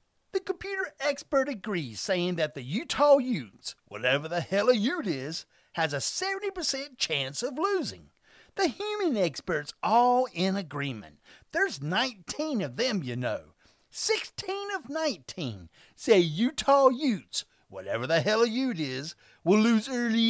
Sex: male